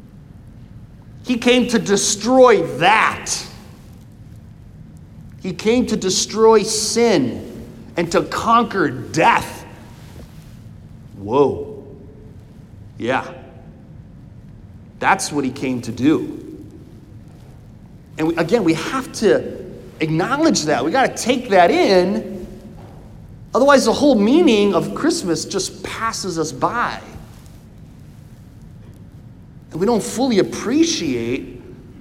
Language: English